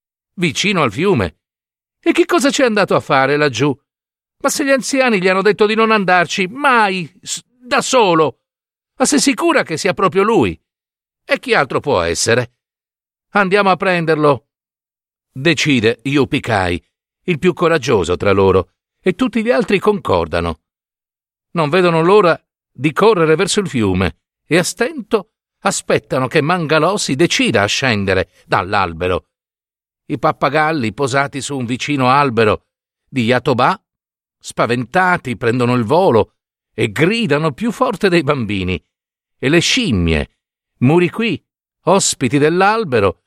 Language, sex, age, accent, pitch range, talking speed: Italian, male, 50-69, native, 125-200 Hz, 135 wpm